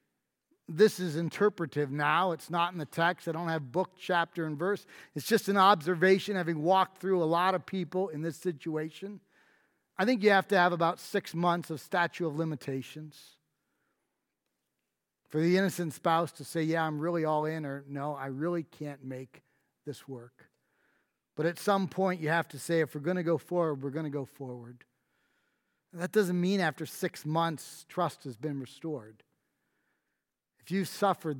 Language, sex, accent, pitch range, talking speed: English, male, American, 140-175 Hz, 180 wpm